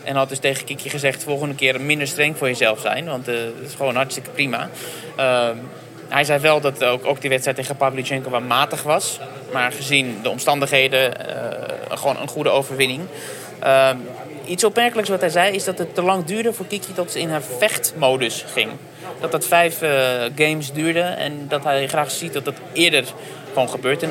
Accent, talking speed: Dutch, 195 wpm